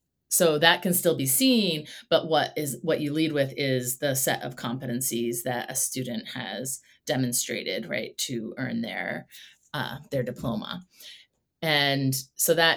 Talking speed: 155 wpm